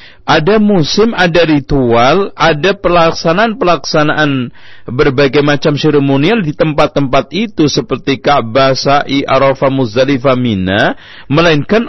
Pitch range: 125-170 Hz